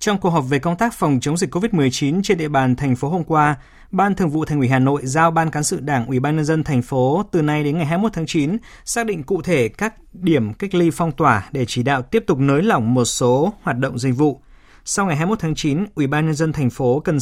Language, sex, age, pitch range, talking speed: Vietnamese, male, 20-39, 130-175 Hz, 270 wpm